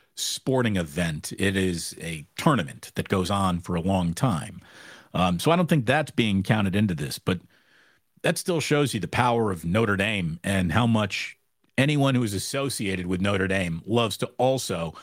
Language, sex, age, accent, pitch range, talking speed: English, male, 50-69, American, 115-165 Hz, 185 wpm